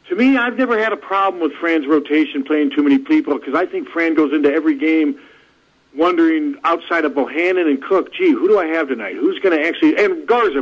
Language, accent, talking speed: English, American, 225 wpm